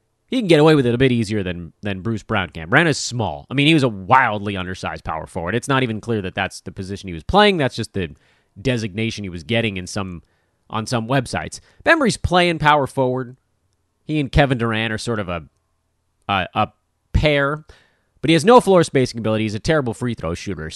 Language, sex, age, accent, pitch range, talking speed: English, male, 30-49, American, 100-150 Hz, 225 wpm